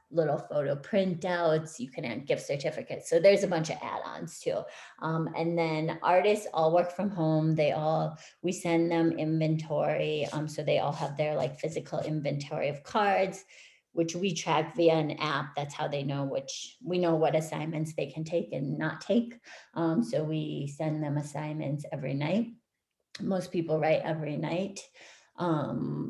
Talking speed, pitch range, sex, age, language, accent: 170 wpm, 155-180 Hz, female, 30-49, English, American